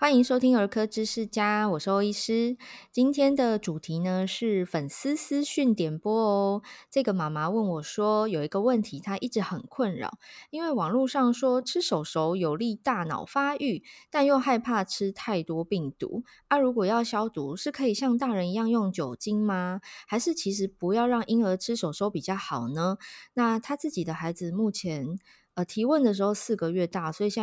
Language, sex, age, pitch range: Chinese, female, 20-39, 170-230 Hz